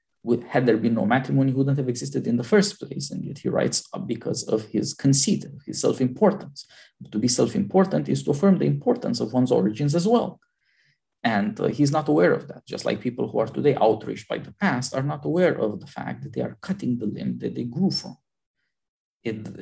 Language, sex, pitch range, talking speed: English, male, 115-160 Hz, 215 wpm